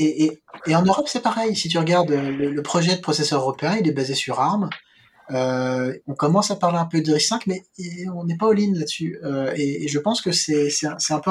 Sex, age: male, 20-39